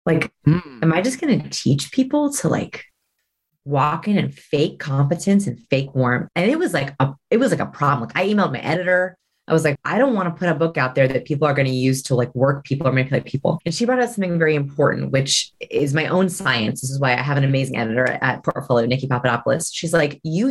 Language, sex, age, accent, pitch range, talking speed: English, female, 30-49, American, 140-205 Hz, 245 wpm